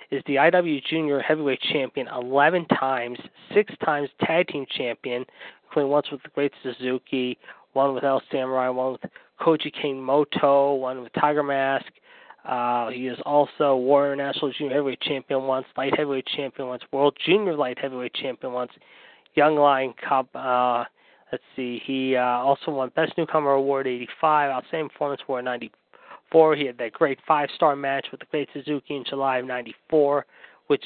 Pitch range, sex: 130-150 Hz, male